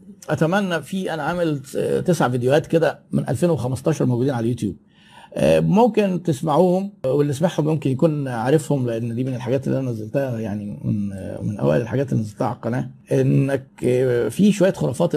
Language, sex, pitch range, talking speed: Arabic, male, 120-165 Hz, 155 wpm